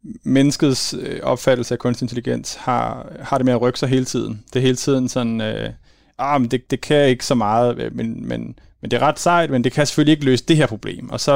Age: 30-49